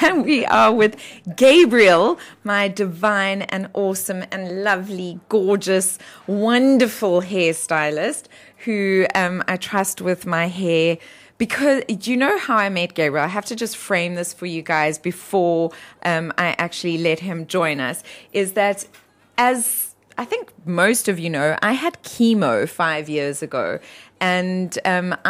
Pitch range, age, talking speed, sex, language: 170-200 Hz, 20-39, 145 wpm, female, English